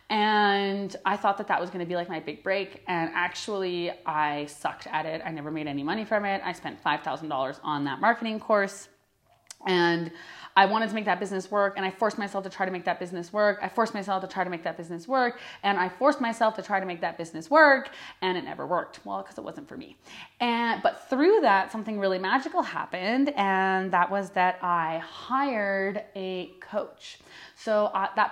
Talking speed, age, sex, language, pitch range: 215 wpm, 20-39, female, English, 180-230 Hz